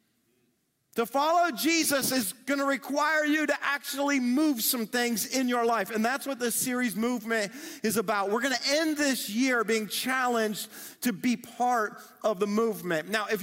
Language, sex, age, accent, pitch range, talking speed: English, male, 40-59, American, 190-230 Hz, 180 wpm